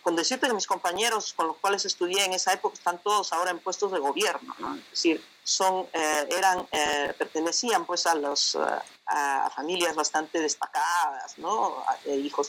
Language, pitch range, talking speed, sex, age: Spanish, 155-210 Hz, 135 wpm, female, 40-59